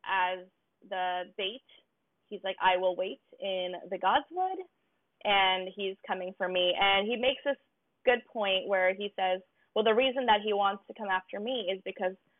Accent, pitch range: American, 185-250 Hz